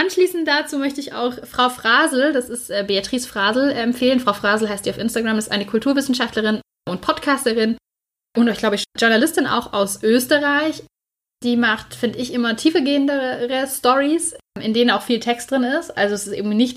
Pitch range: 215-270 Hz